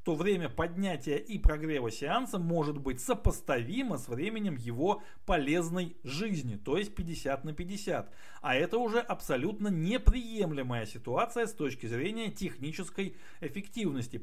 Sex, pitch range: male, 140-210 Hz